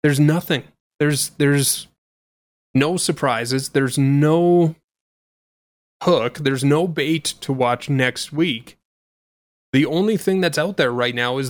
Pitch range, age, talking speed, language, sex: 125-160 Hz, 30-49, 130 wpm, English, male